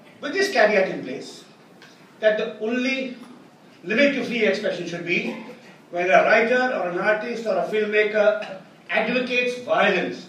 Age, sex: 40-59, male